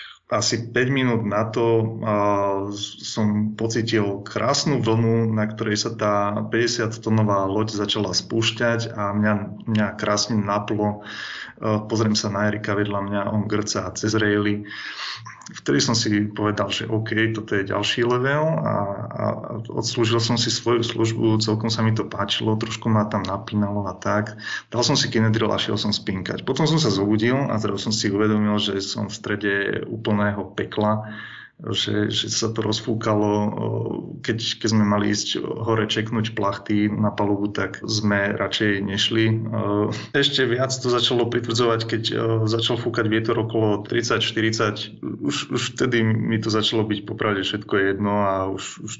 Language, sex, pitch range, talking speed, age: Slovak, male, 105-115 Hz, 155 wpm, 30-49